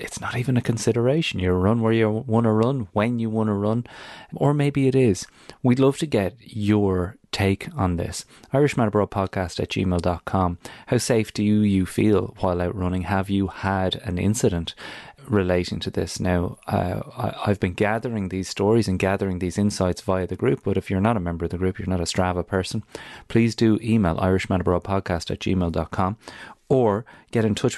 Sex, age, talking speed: male, 30-49, 185 wpm